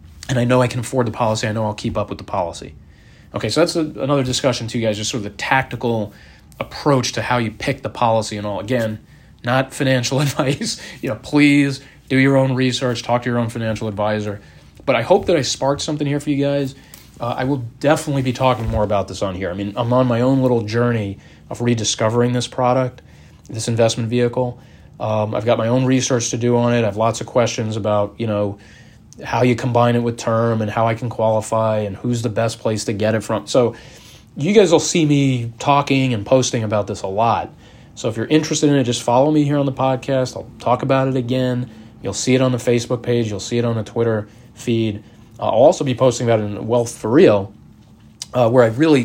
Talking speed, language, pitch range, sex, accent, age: 230 wpm, English, 110-130 Hz, male, American, 30-49